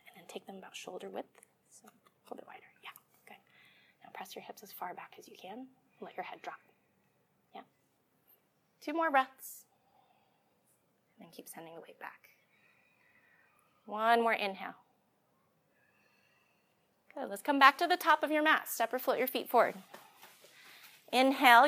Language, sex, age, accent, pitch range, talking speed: English, female, 20-39, American, 220-285 Hz, 165 wpm